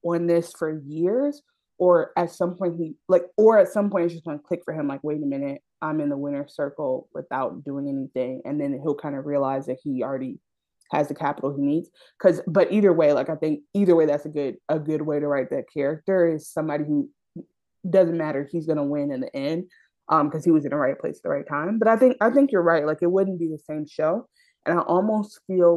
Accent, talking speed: American, 245 wpm